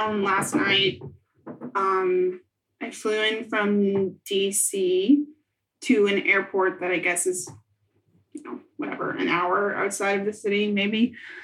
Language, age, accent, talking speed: English, 30-49, American, 135 wpm